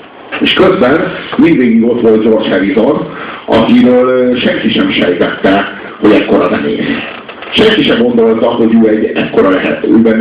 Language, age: Hungarian, 50-69